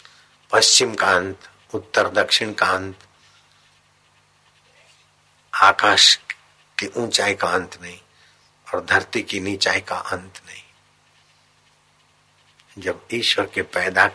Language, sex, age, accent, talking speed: Hindi, male, 60-79, native, 100 wpm